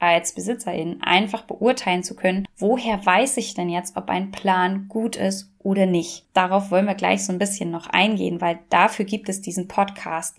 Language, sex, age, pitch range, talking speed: German, female, 10-29, 175-200 Hz, 190 wpm